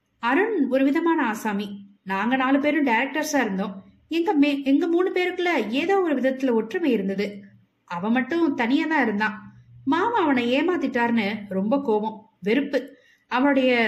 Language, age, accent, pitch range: Tamil, 20-39, native, 215-290 Hz